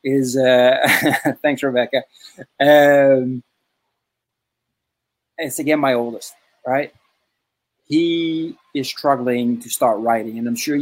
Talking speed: 105 wpm